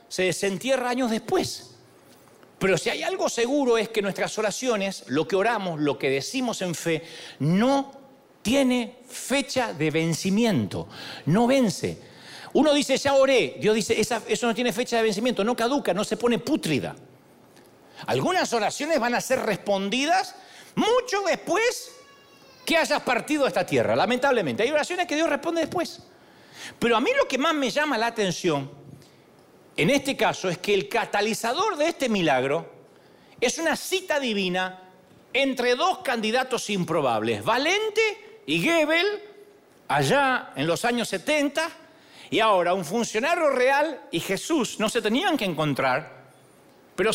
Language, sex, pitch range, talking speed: Spanish, male, 200-290 Hz, 145 wpm